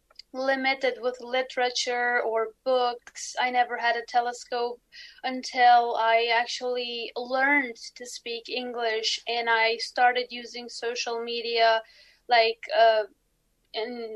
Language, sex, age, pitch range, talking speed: English, female, 20-39, 235-275 Hz, 110 wpm